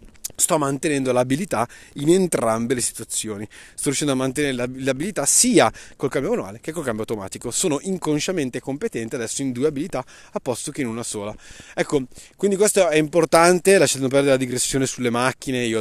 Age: 30-49